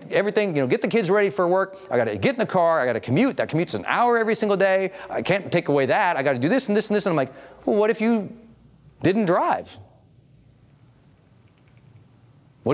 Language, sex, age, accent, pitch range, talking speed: English, male, 40-59, American, 130-190 Hz, 240 wpm